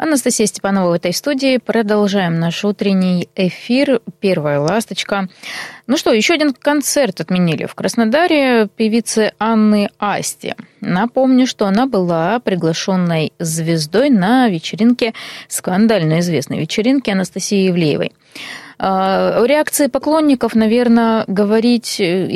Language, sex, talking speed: Russian, female, 105 wpm